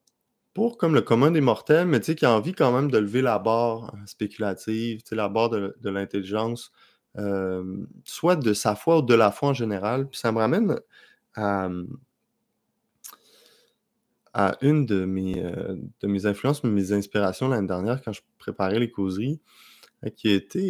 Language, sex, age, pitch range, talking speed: French, male, 20-39, 100-125 Hz, 170 wpm